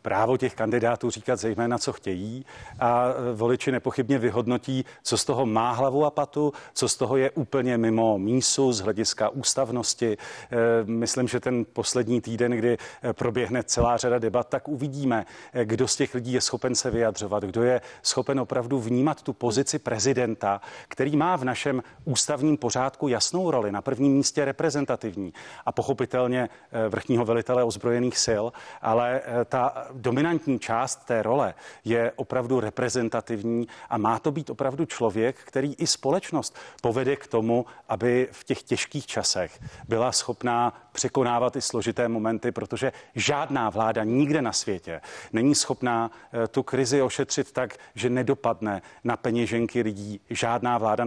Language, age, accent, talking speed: Czech, 40-59, native, 145 wpm